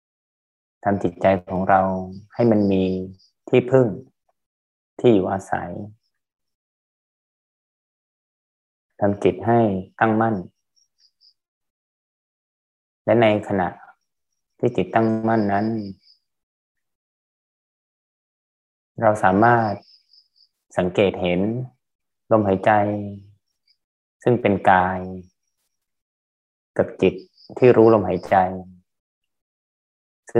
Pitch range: 90-110 Hz